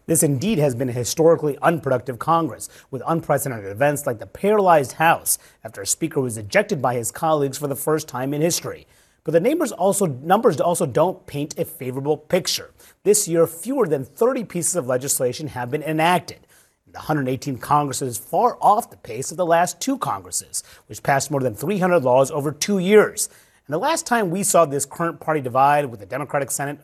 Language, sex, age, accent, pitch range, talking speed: English, male, 30-49, American, 125-165 Hz, 190 wpm